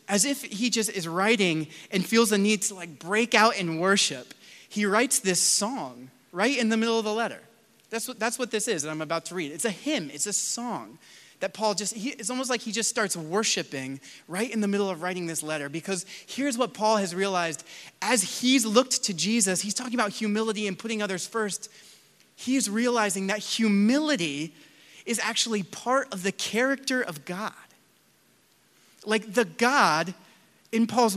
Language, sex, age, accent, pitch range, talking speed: English, male, 30-49, American, 185-230 Hz, 190 wpm